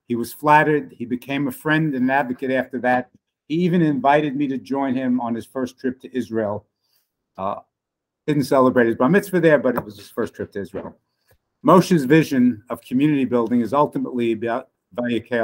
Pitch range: 120-150 Hz